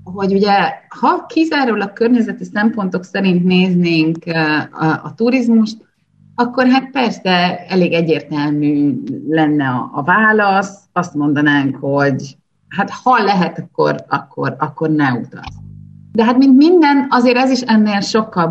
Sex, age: female, 30-49